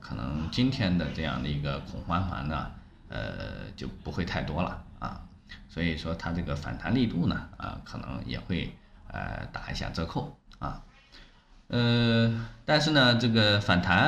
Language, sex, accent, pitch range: Chinese, male, native, 75-105 Hz